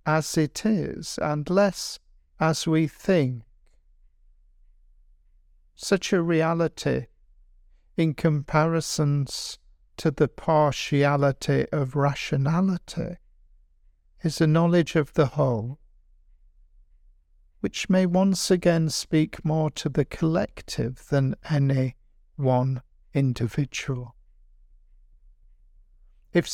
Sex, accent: male, British